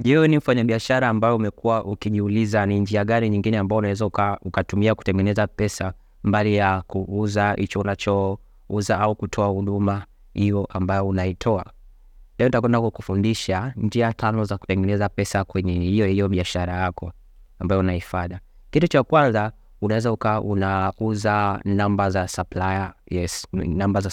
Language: Swahili